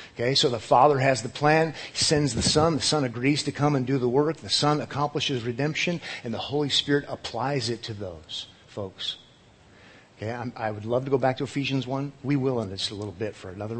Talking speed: 225 wpm